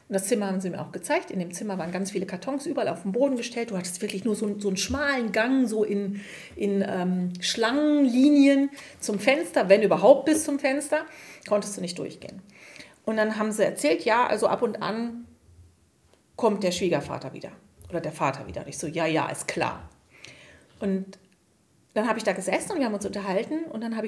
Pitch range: 190-245 Hz